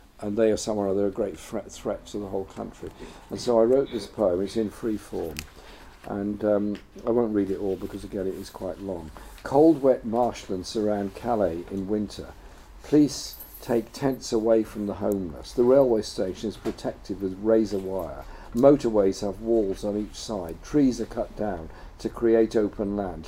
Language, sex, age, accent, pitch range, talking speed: English, male, 50-69, British, 95-115 Hz, 185 wpm